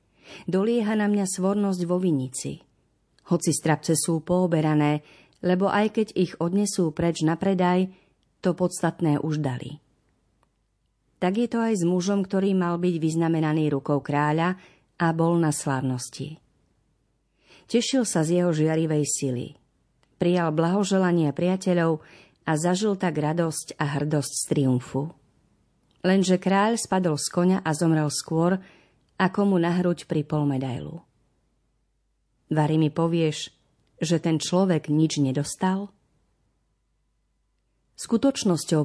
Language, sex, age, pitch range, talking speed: Slovak, female, 40-59, 155-190 Hz, 120 wpm